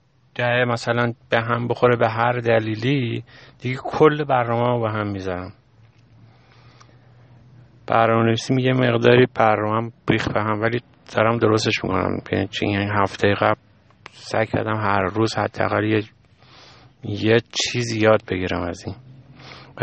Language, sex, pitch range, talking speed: Persian, male, 105-125 Hz, 135 wpm